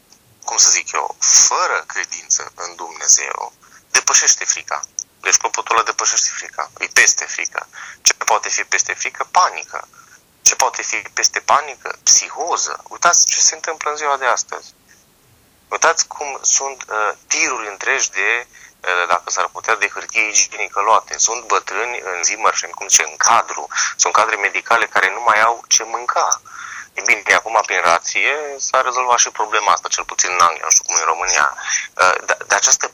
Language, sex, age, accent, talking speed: Romanian, male, 30-49, native, 170 wpm